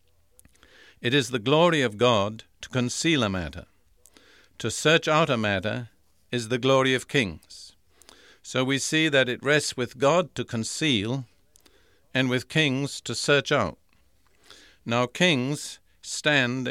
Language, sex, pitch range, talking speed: English, male, 110-140 Hz, 140 wpm